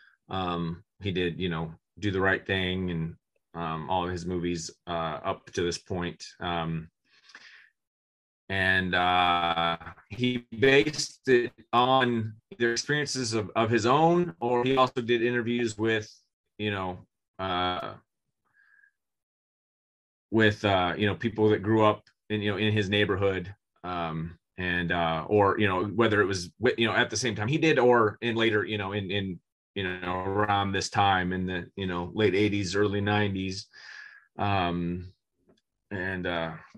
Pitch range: 90-115 Hz